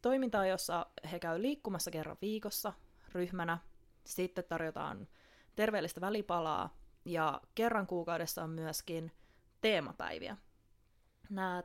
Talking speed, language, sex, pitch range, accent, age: 100 wpm, Finnish, female, 165-190 Hz, native, 20-39